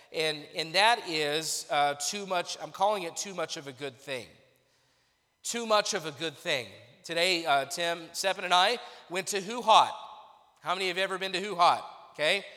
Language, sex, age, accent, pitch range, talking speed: English, male, 30-49, American, 160-200 Hz, 195 wpm